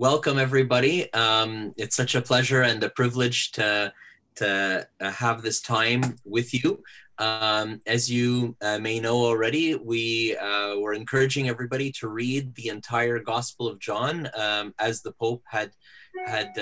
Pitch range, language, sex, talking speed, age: 105-125 Hz, English, male, 150 wpm, 30-49